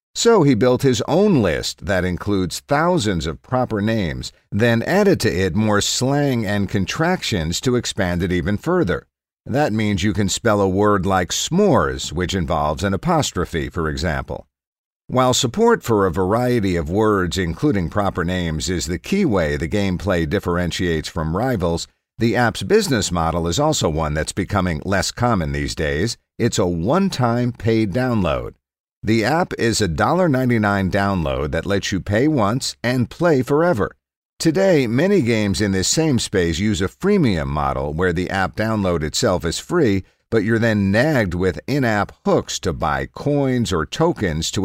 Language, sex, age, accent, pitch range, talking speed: English, male, 50-69, American, 90-120 Hz, 165 wpm